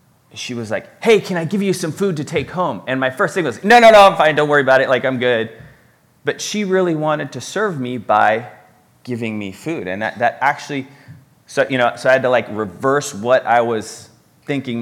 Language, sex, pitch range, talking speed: English, male, 120-160 Hz, 235 wpm